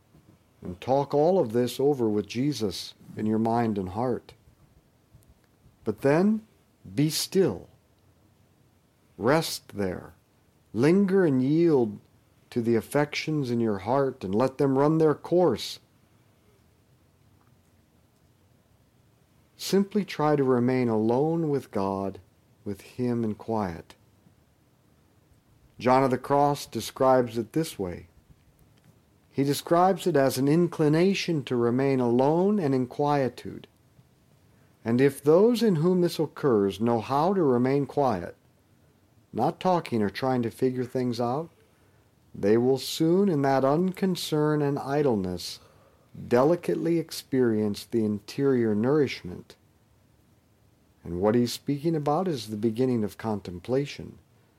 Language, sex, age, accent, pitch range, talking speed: English, male, 50-69, American, 110-150 Hz, 120 wpm